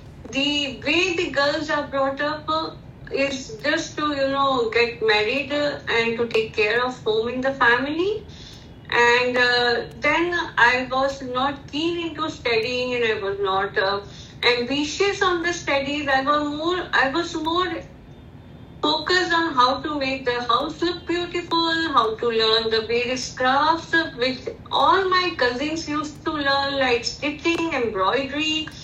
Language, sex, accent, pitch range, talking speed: English, female, Indian, 240-320 Hz, 150 wpm